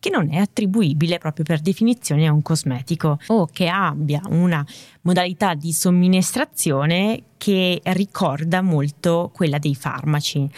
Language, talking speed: Italian, 130 wpm